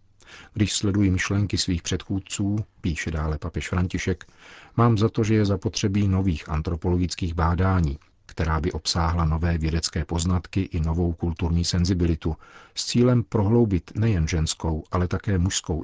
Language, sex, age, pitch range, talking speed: Czech, male, 50-69, 85-100 Hz, 135 wpm